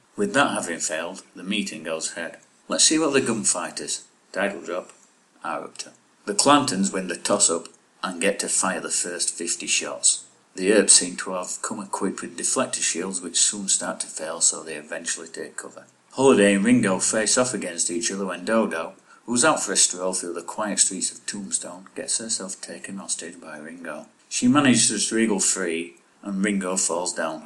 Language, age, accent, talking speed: English, 50-69, British, 190 wpm